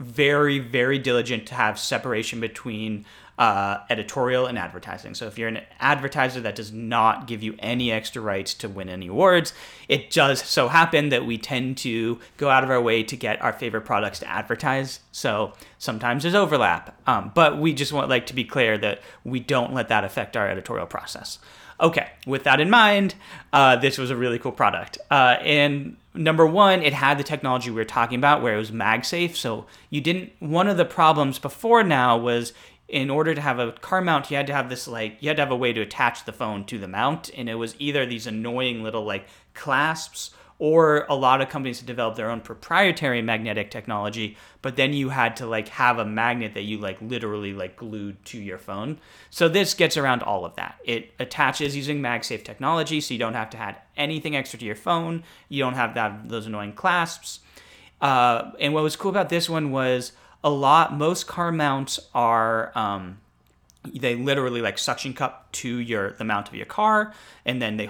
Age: 30-49